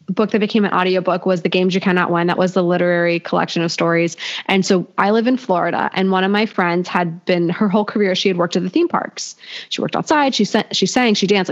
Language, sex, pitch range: English, female, 170-205 Hz